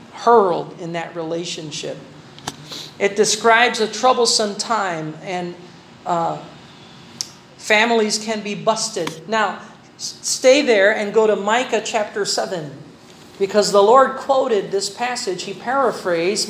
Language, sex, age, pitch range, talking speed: Filipino, male, 40-59, 185-225 Hz, 120 wpm